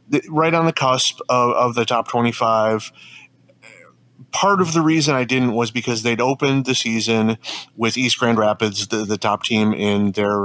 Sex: male